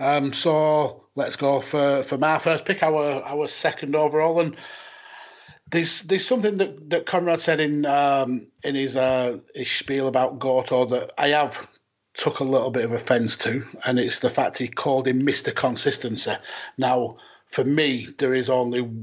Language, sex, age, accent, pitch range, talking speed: English, male, 30-49, British, 130-150 Hz, 175 wpm